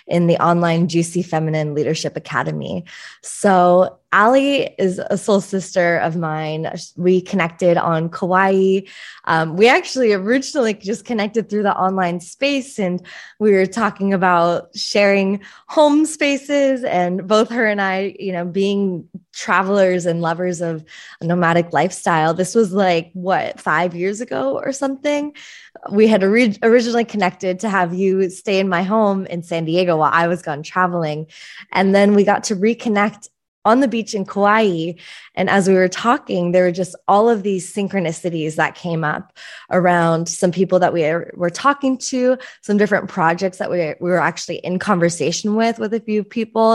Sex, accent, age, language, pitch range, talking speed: female, American, 20-39, English, 170-210 Hz, 165 wpm